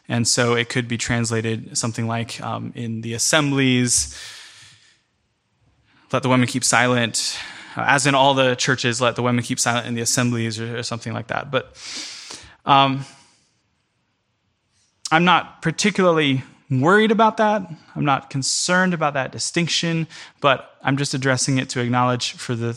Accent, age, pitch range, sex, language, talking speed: American, 20-39, 120-150 Hz, male, English, 155 wpm